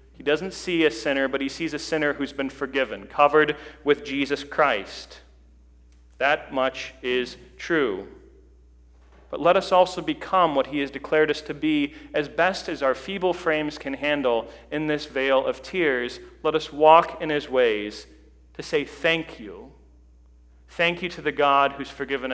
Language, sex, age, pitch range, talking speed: English, male, 40-59, 115-160 Hz, 170 wpm